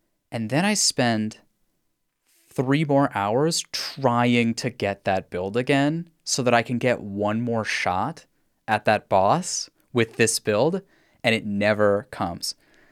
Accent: American